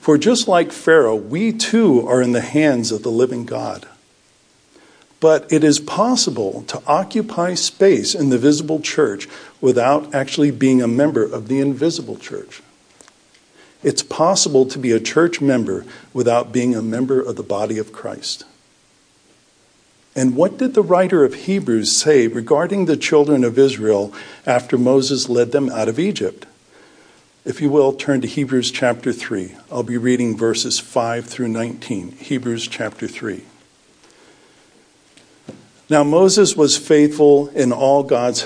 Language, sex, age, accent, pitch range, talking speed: English, male, 50-69, American, 120-155 Hz, 150 wpm